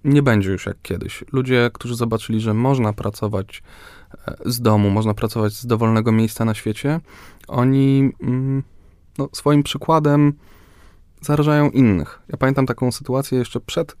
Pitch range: 105-140 Hz